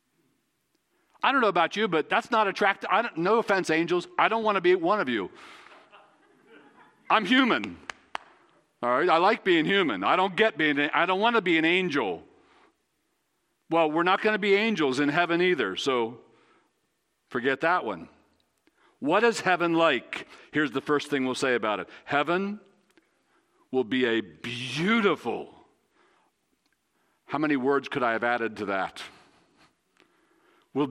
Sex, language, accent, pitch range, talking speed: male, English, American, 160-260 Hz, 155 wpm